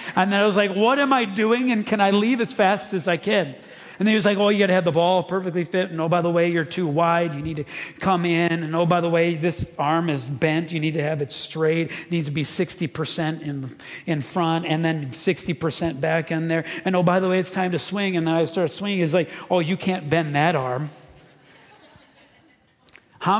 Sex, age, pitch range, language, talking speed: male, 40-59, 130-175 Hz, English, 250 wpm